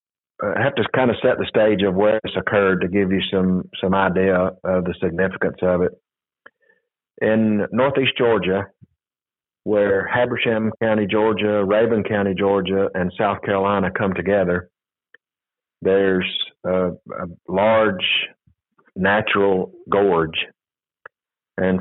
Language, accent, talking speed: English, American, 125 wpm